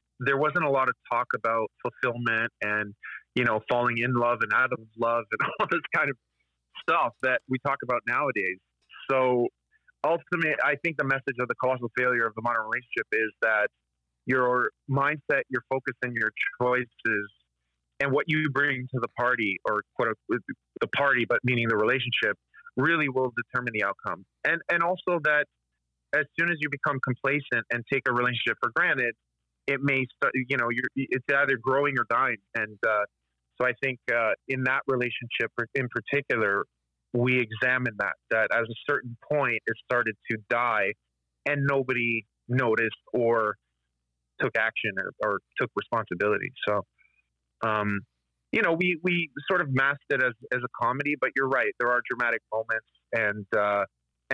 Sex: male